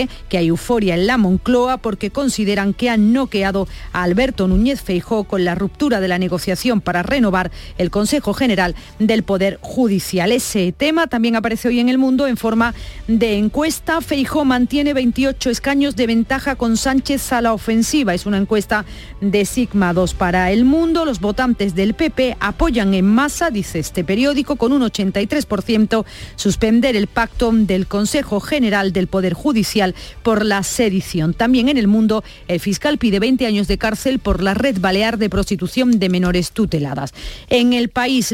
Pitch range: 195-255 Hz